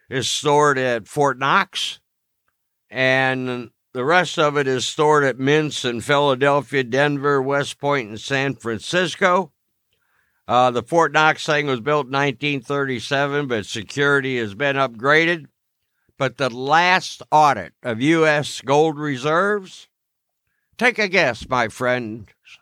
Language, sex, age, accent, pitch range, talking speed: English, male, 60-79, American, 105-150 Hz, 130 wpm